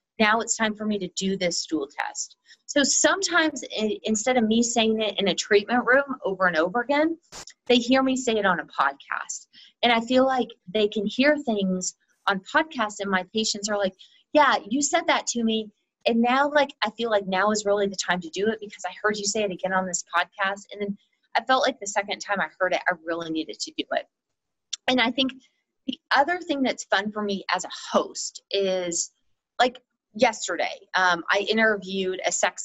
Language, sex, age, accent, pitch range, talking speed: English, female, 30-49, American, 190-255 Hz, 215 wpm